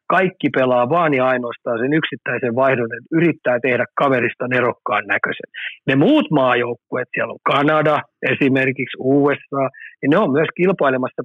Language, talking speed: Finnish, 145 wpm